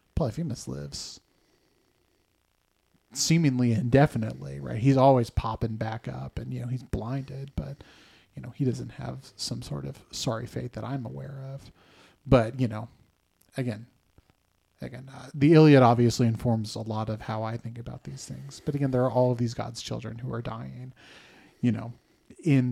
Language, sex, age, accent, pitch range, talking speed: English, male, 30-49, American, 110-135 Hz, 170 wpm